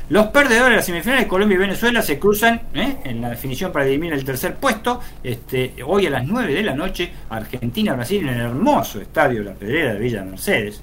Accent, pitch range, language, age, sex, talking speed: Argentinian, 115-165 Hz, Spanish, 50-69, male, 200 wpm